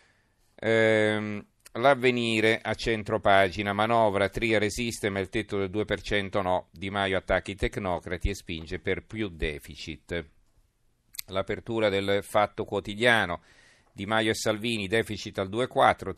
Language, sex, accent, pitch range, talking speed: Italian, male, native, 90-110 Hz, 120 wpm